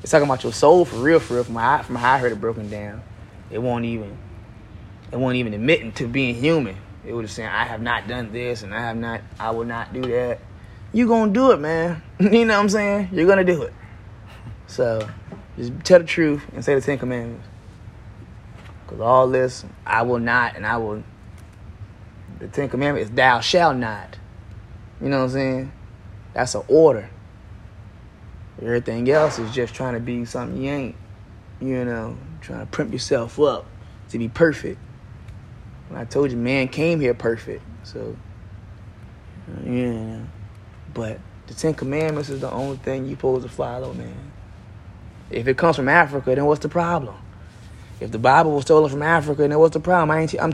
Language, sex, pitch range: English, male, 105-140 Hz